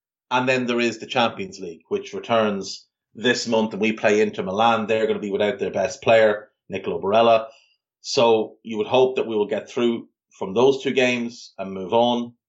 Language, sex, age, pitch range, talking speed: English, male, 30-49, 110-130 Hz, 200 wpm